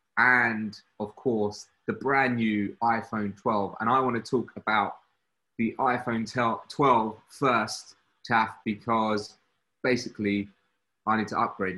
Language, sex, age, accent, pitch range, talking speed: English, male, 20-39, British, 100-120 Hz, 125 wpm